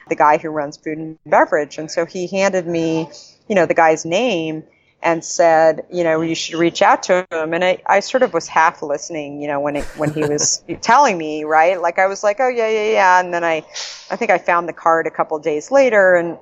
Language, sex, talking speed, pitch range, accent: English, female, 250 wpm, 160-185 Hz, American